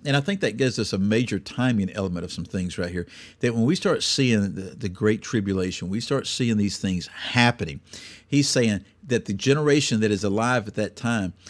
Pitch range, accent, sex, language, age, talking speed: 95-120 Hz, American, male, English, 50-69, 215 wpm